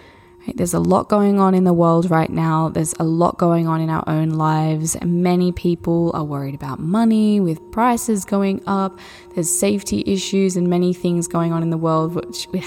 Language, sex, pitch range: English, female, 165-210 Hz